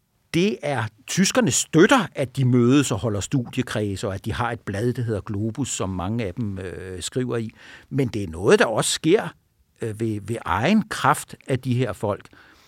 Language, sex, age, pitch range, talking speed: Danish, male, 60-79, 105-135 Hz, 190 wpm